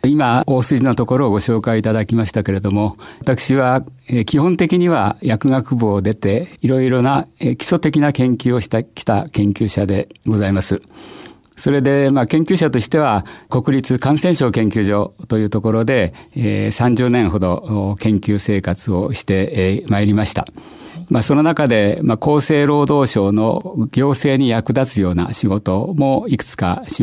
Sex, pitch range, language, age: male, 100-135 Hz, Japanese, 60-79